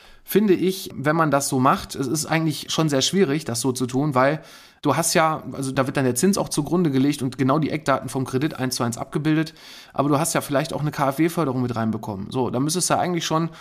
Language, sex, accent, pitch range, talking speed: German, male, German, 125-145 Hz, 250 wpm